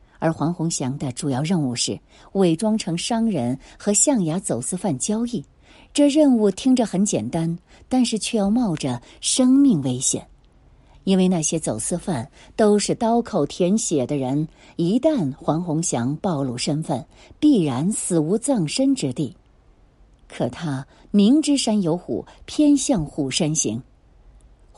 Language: Chinese